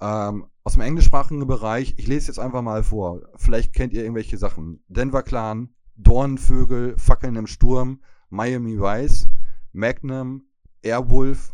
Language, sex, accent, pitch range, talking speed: German, male, German, 105-125 Hz, 135 wpm